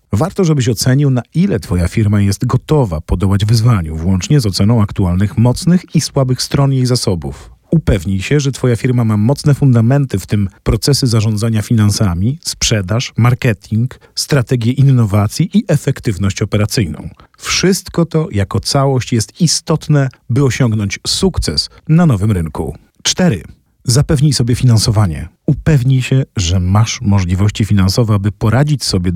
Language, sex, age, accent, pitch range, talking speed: Polish, male, 40-59, native, 100-135 Hz, 135 wpm